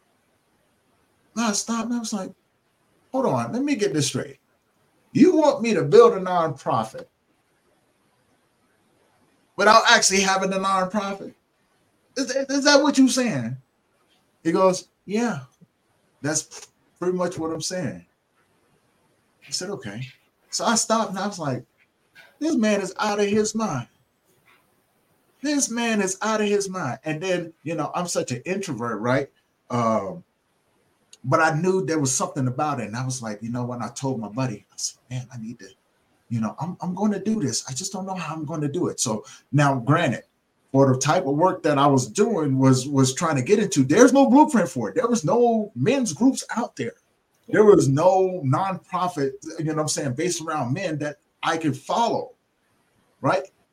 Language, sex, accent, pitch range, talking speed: English, male, American, 135-220 Hz, 180 wpm